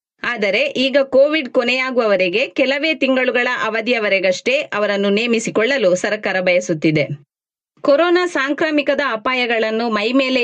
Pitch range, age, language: 195-265 Hz, 20-39, Kannada